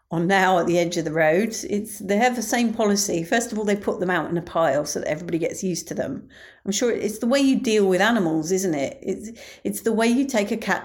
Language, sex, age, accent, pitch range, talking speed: English, female, 40-59, British, 170-220 Hz, 275 wpm